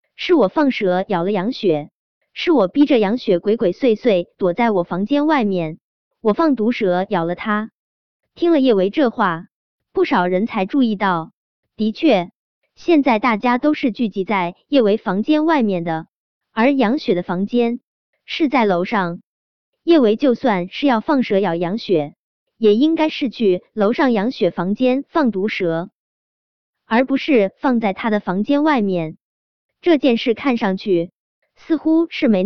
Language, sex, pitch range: Chinese, male, 190-275 Hz